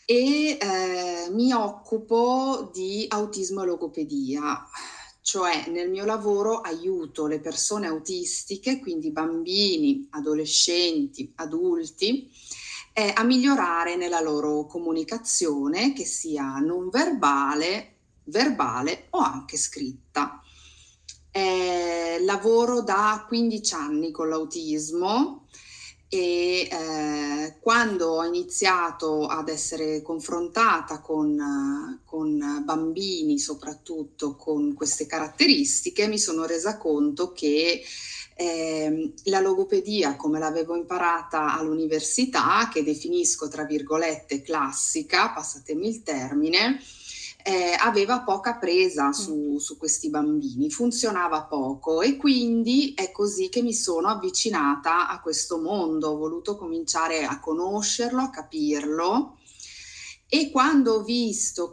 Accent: native